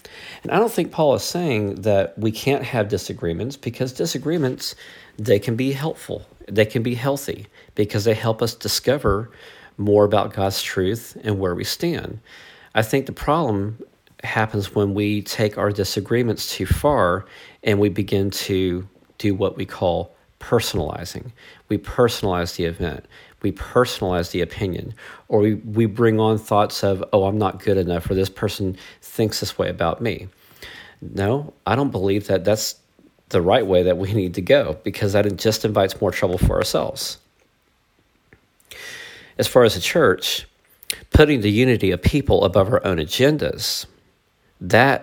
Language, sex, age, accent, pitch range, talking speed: English, male, 40-59, American, 95-115 Hz, 160 wpm